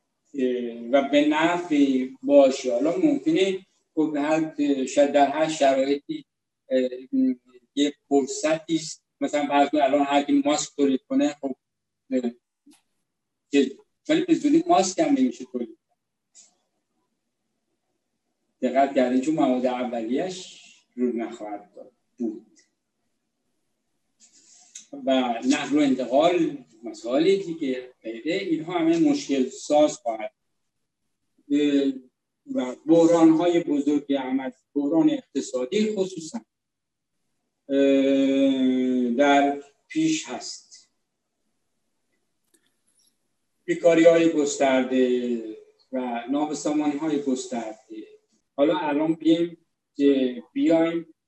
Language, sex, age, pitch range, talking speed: Persian, male, 60-79, 130-215 Hz, 75 wpm